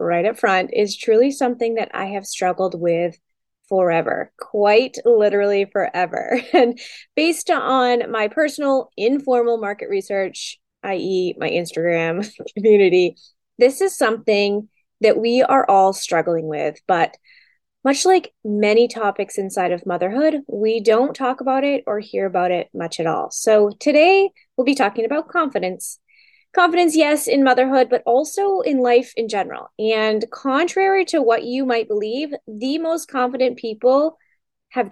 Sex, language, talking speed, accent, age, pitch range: female, English, 145 wpm, American, 20-39, 205-275 Hz